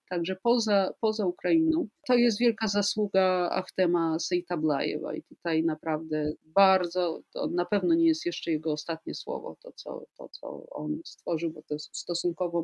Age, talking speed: 40-59, 160 wpm